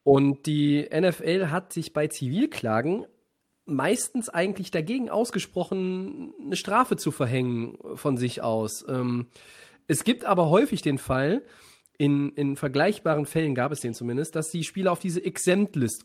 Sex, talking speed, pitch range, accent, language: male, 140 wpm, 140-180 Hz, German, German